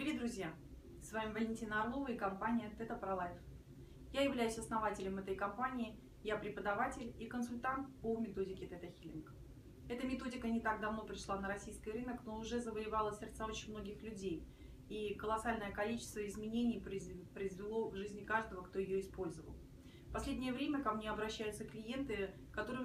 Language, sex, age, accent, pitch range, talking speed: Russian, female, 30-49, native, 200-235 Hz, 150 wpm